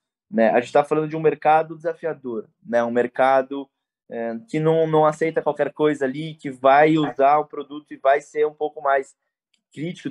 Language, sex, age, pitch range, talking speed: Portuguese, male, 20-39, 125-150 Hz, 190 wpm